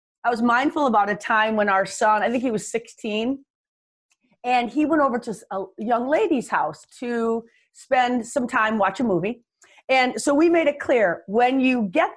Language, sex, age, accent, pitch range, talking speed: English, female, 40-59, American, 210-260 Hz, 180 wpm